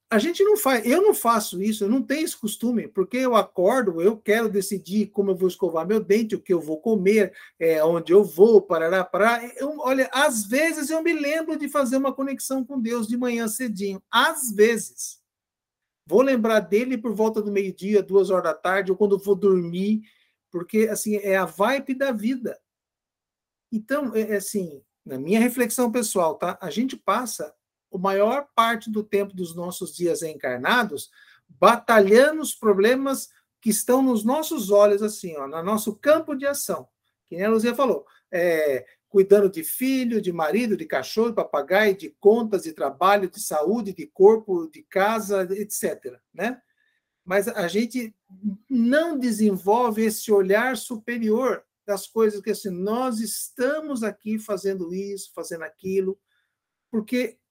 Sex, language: male, Portuguese